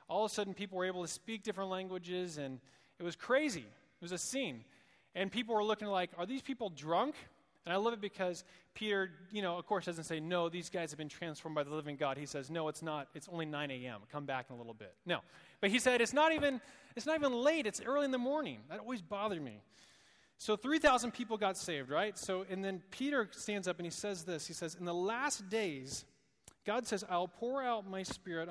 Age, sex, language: 30-49, male, English